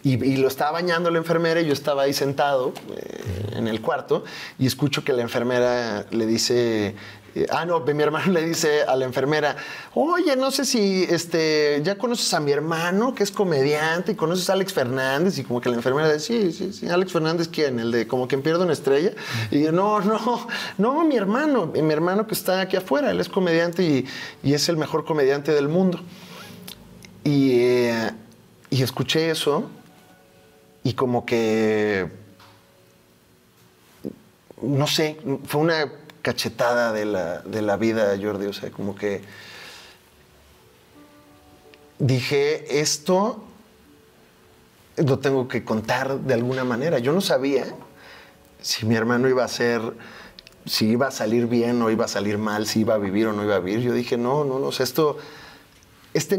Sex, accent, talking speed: male, Mexican, 175 wpm